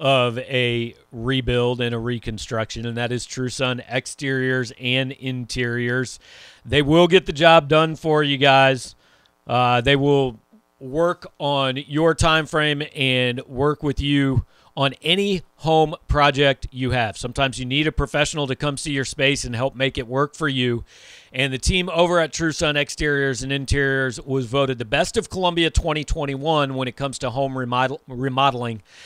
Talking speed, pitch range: 165 wpm, 125-155 Hz